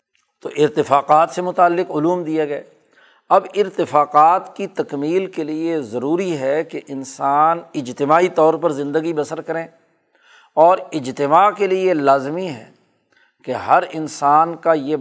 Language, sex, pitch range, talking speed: Urdu, male, 140-170 Hz, 130 wpm